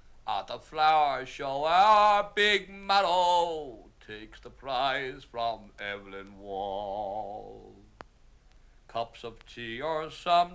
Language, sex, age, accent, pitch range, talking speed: English, male, 60-79, American, 125-180 Hz, 100 wpm